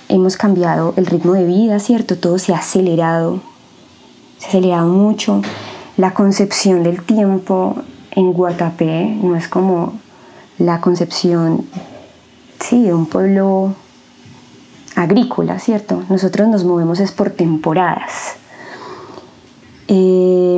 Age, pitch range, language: 20-39, 175-200 Hz, Spanish